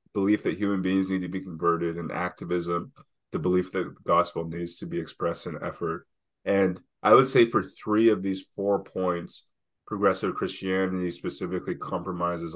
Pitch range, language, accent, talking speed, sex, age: 85-100 Hz, English, American, 160 wpm, male, 30-49